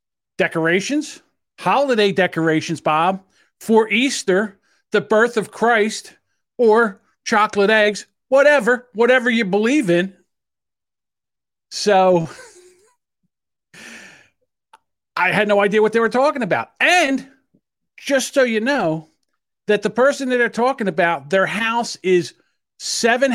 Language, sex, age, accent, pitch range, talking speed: English, male, 50-69, American, 170-245 Hz, 115 wpm